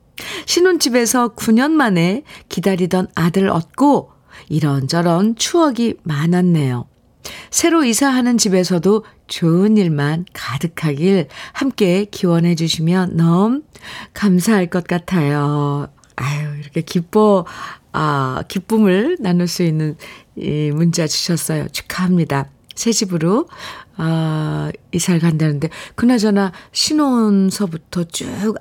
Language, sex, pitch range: Korean, female, 155-210 Hz